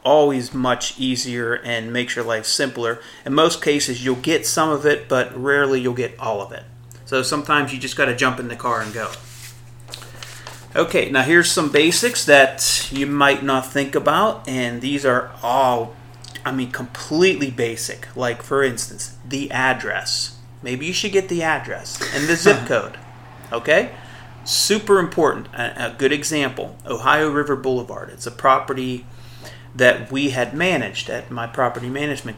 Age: 30-49